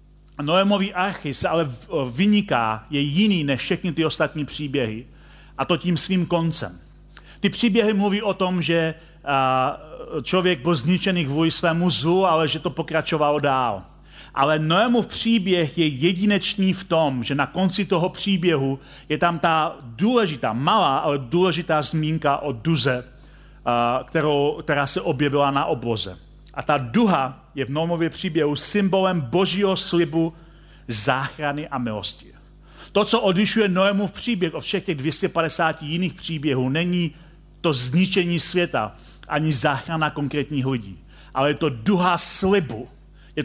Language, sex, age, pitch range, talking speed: Czech, male, 40-59, 140-185 Hz, 135 wpm